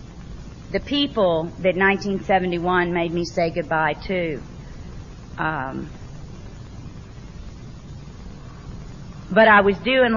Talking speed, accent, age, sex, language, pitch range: 85 wpm, American, 40-59, female, English, 165-200 Hz